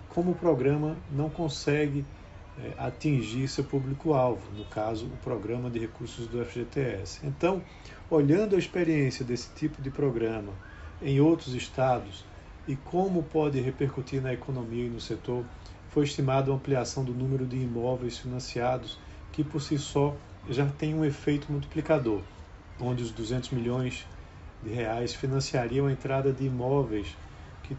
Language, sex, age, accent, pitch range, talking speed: Portuguese, male, 40-59, Brazilian, 115-140 Hz, 145 wpm